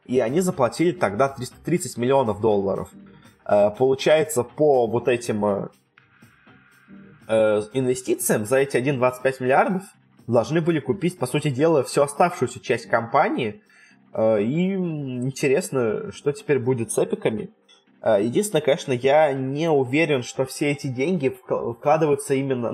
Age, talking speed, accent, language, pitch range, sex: 20-39, 115 wpm, native, Russian, 115-145 Hz, male